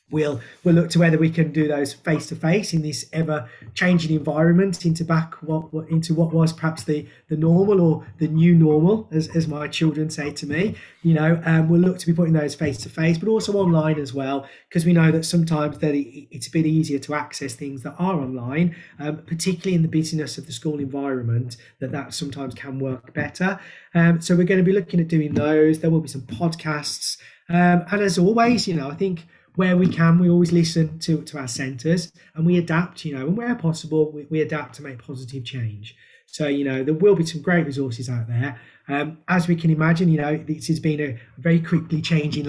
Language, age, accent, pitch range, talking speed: English, 30-49, British, 140-170 Hz, 225 wpm